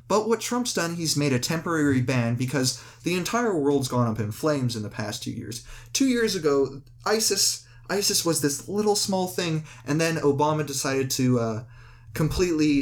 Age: 20-39